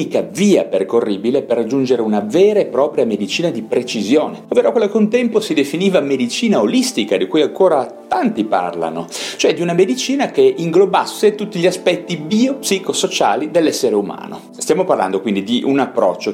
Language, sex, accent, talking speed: Italian, male, native, 155 wpm